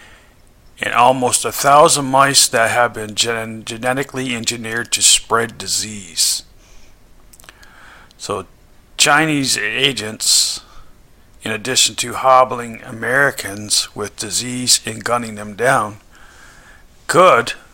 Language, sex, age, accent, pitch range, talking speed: English, male, 50-69, American, 105-130 Hz, 95 wpm